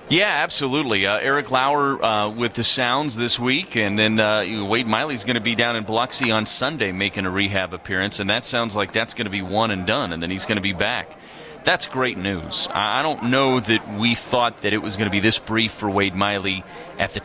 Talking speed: 240 wpm